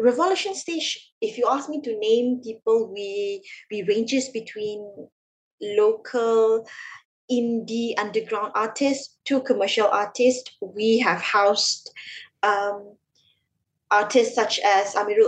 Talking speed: 110 wpm